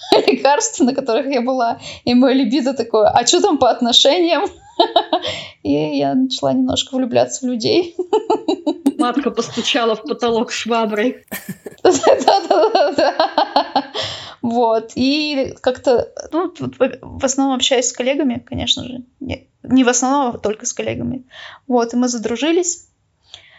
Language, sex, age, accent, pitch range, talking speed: Russian, female, 20-39, native, 230-270 Hz, 120 wpm